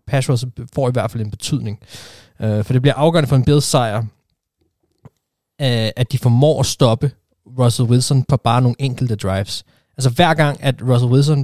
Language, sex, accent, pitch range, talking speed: Danish, male, native, 120-145 Hz, 175 wpm